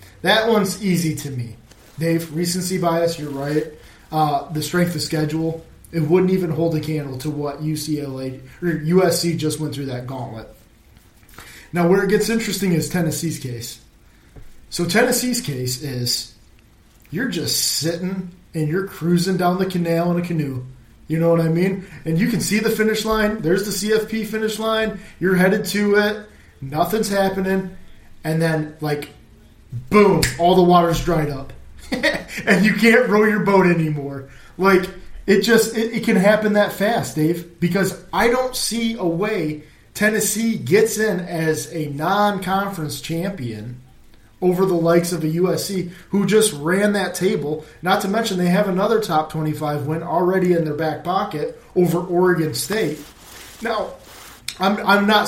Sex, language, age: male, English, 20-39